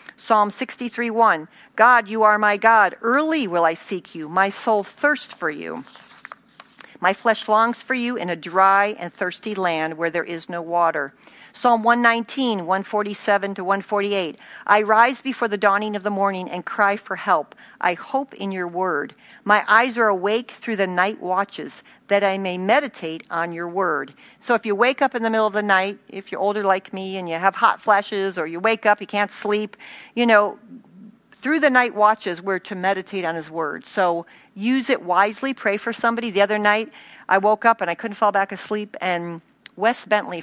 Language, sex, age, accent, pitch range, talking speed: English, female, 50-69, American, 185-230 Hz, 195 wpm